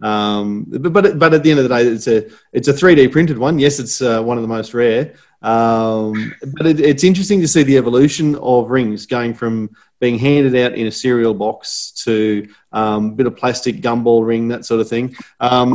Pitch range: 110-135 Hz